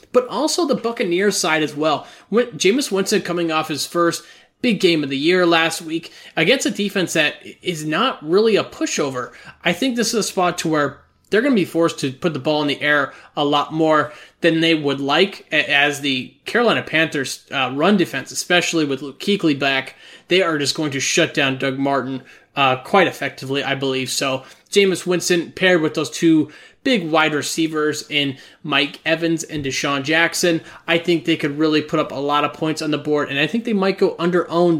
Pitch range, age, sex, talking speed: 145-175 Hz, 20-39, male, 200 wpm